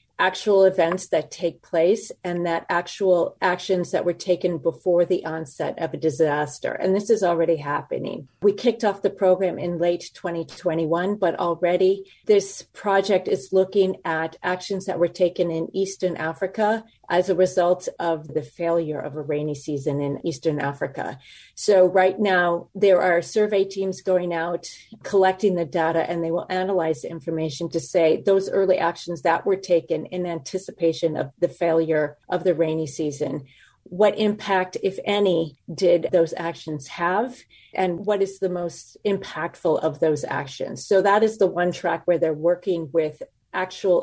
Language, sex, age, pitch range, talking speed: English, female, 40-59, 165-190 Hz, 165 wpm